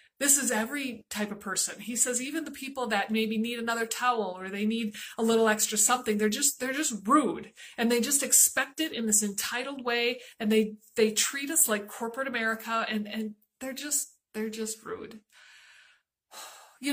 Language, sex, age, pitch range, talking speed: English, female, 30-49, 220-290 Hz, 190 wpm